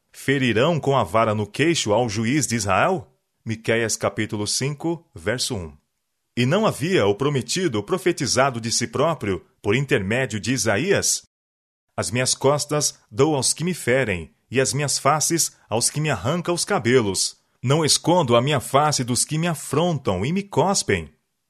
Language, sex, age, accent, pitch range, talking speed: Portuguese, male, 30-49, Brazilian, 115-150 Hz, 160 wpm